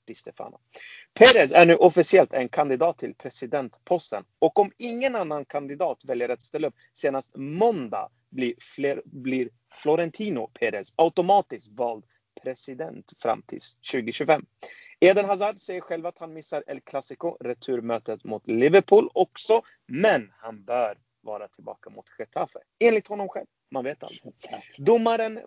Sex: male